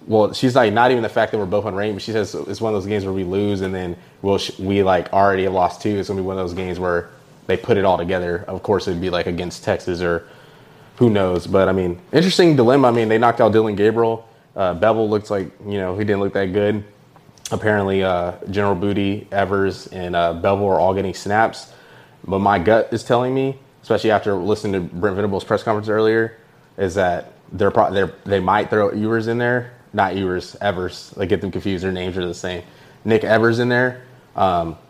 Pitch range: 95-110 Hz